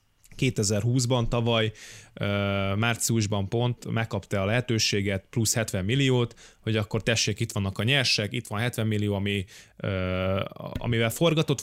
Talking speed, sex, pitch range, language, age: 125 wpm, male, 105-125 Hz, Hungarian, 20-39